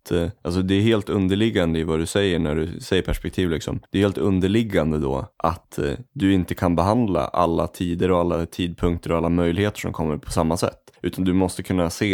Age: 20-39